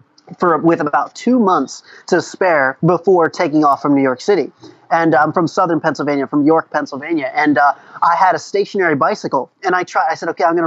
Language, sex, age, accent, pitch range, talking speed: English, male, 30-49, American, 165-200 Hz, 210 wpm